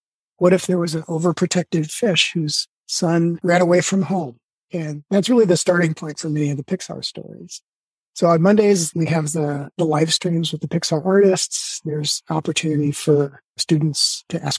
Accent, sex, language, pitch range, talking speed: American, male, English, 155-185 Hz, 180 wpm